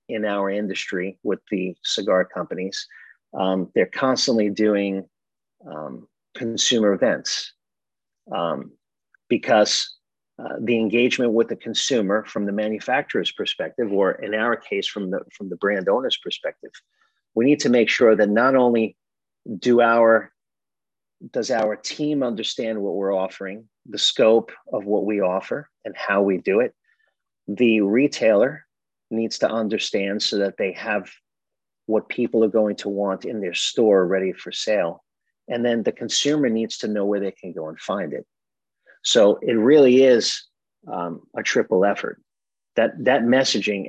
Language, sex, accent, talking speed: English, male, American, 150 wpm